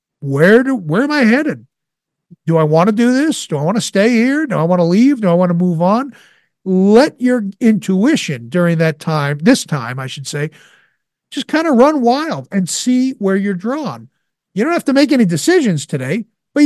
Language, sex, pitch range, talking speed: English, male, 165-220 Hz, 215 wpm